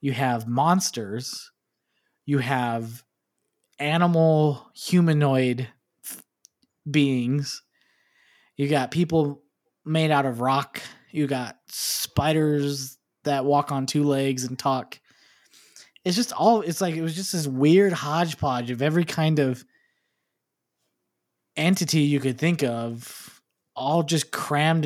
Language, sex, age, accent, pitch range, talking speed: English, male, 20-39, American, 125-155 Hz, 115 wpm